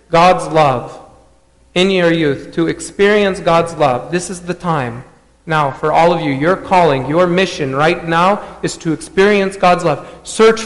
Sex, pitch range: male, 145-185 Hz